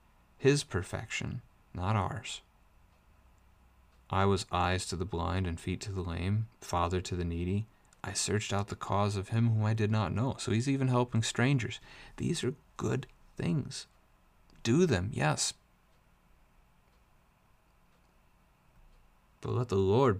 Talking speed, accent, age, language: 140 wpm, American, 30-49, English